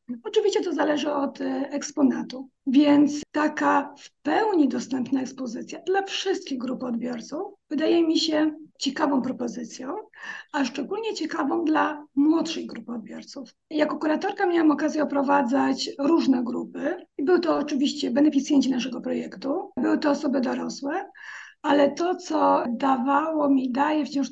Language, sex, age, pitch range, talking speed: Polish, female, 50-69, 275-320 Hz, 130 wpm